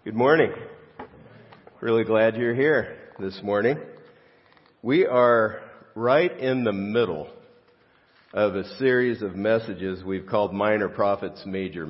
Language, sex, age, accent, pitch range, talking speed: English, male, 50-69, American, 95-120 Hz, 120 wpm